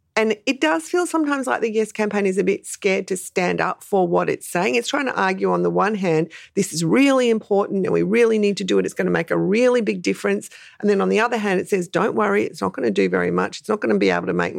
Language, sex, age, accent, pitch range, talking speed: English, female, 40-59, Australian, 170-220 Hz, 295 wpm